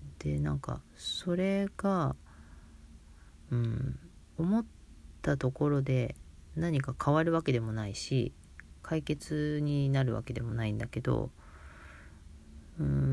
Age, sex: 40-59, female